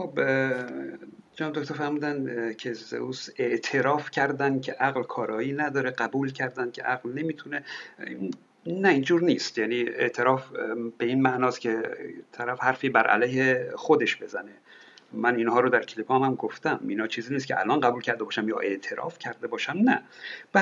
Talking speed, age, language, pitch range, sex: 155 wpm, 60-79, Persian, 130-190 Hz, male